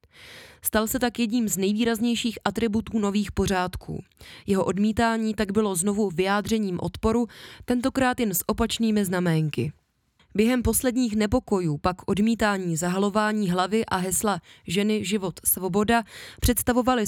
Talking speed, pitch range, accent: 120 wpm, 180-225 Hz, native